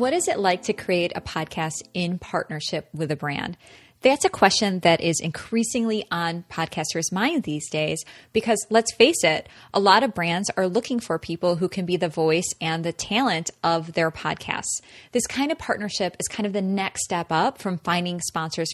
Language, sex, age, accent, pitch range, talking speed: English, female, 20-39, American, 165-210 Hz, 195 wpm